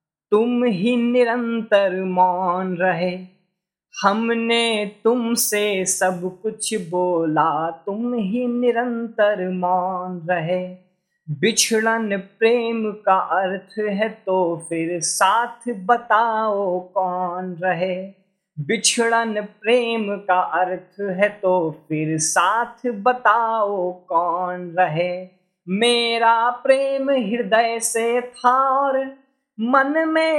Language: Hindi